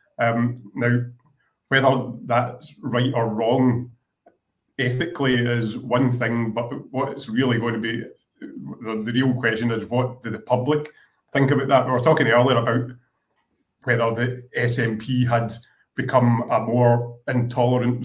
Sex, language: male, English